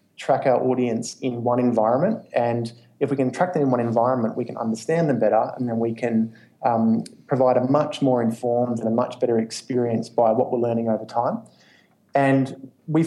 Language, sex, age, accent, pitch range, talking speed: English, male, 20-39, Australian, 120-135 Hz, 195 wpm